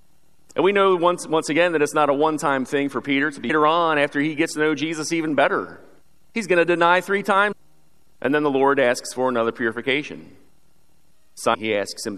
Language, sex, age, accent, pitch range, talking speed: English, male, 40-59, American, 135-170 Hz, 215 wpm